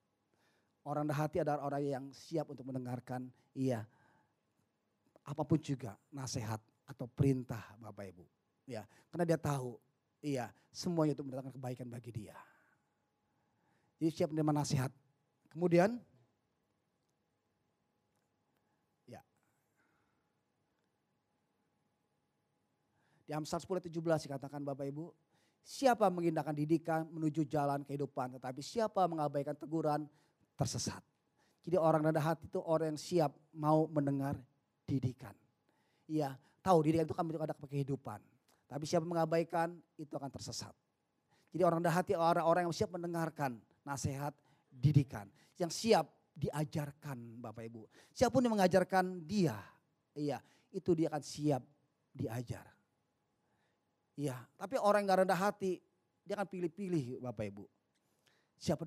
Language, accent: Indonesian, native